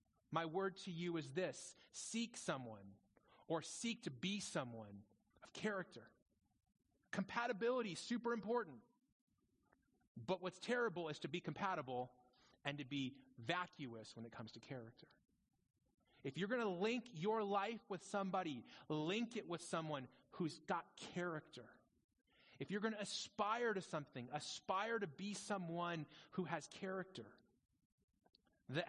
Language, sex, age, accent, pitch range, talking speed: English, male, 30-49, American, 140-190 Hz, 135 wpm